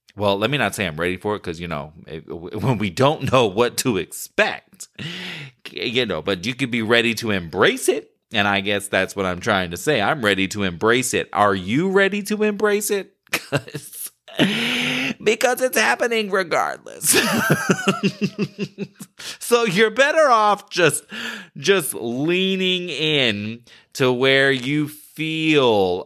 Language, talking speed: English, 150 wpm